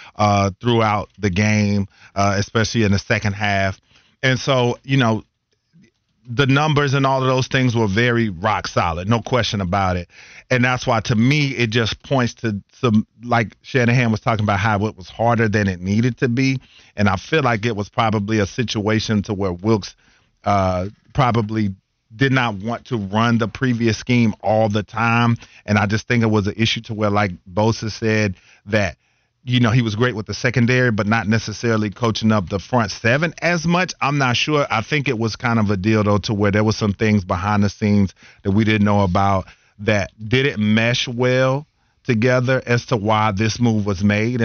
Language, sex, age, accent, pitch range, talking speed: English, male, 40-59, American, 105-120 Hz, 200 wpm